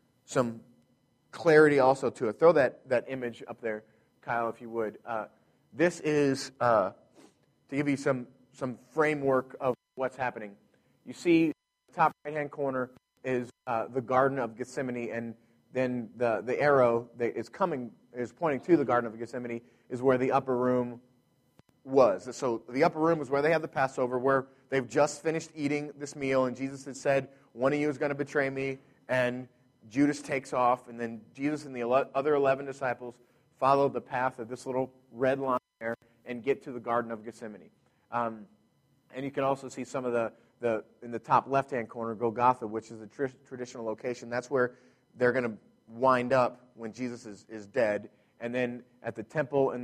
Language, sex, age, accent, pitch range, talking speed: English, male, 30-49, American, 120-135 Hz, 195 wpm